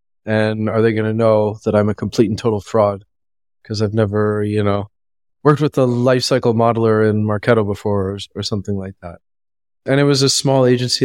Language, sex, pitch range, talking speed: English, male, 100-120 Hz, 200 wpm